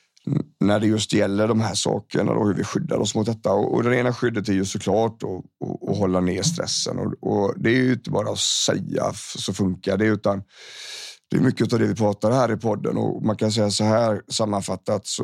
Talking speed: 230 wpm